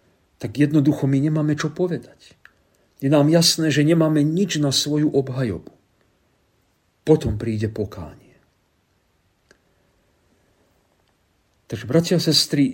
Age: 50-69